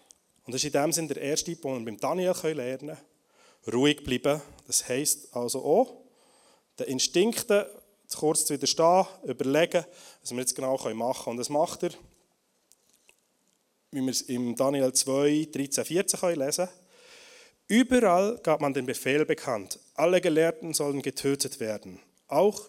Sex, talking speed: male, 155 wpm